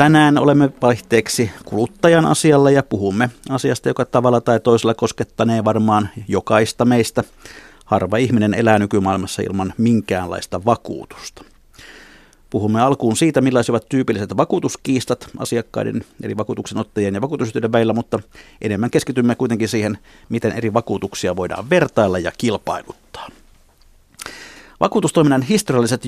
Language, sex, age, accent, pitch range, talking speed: Finnish, male, 50-69, native, 100-120 Hz, 115 wpm